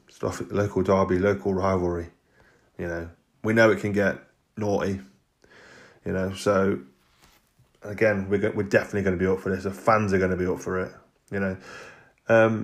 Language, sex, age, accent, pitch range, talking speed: English, male, 20-39, British, 95-115 Hz, 185 wpm